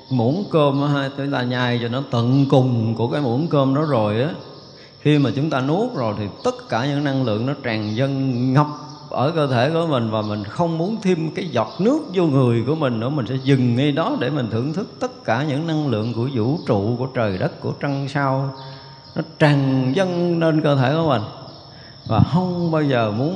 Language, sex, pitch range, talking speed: Vietnamese, male, 120-155 Hz, 220 wpm